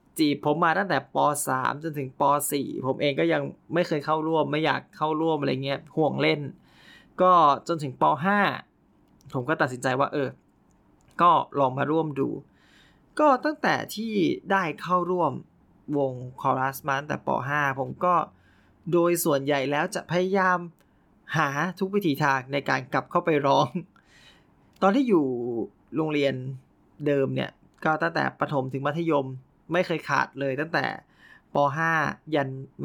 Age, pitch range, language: 20-39, 135-165 Hz, Thai